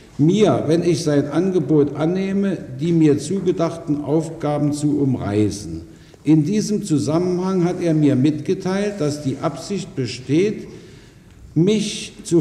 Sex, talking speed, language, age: male, 120 wpm, German, 60-79